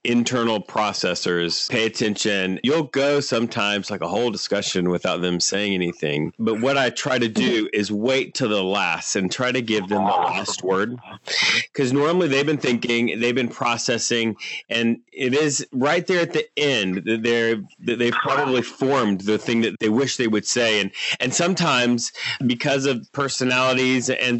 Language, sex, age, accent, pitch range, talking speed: English, male, 30-49, American, 110-140 Hz, 175 wpm